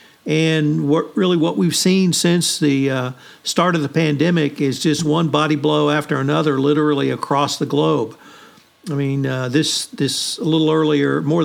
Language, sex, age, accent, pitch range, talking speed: English, male, 50-69, American, 140-165 Hz, 175 wpm